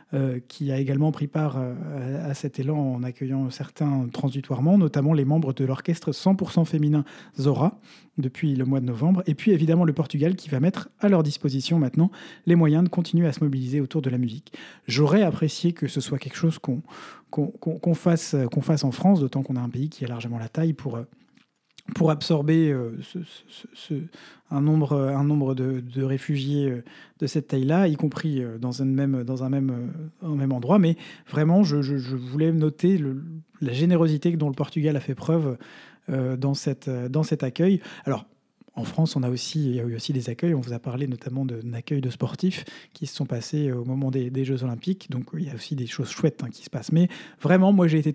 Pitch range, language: 135-165 Hz, French